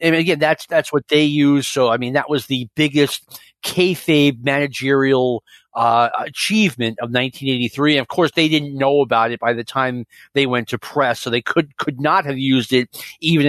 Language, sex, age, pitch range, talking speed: English, male, 30-49, 130-170 Hz, 195 wpm